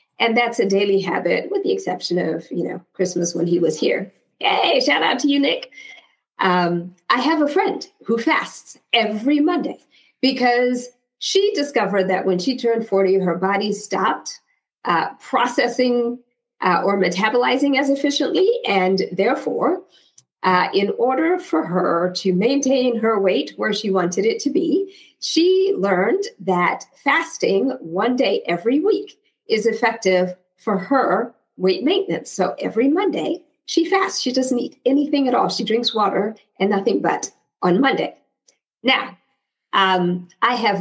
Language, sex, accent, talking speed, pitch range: English, female, American, 150 wpm, 190-290 Hz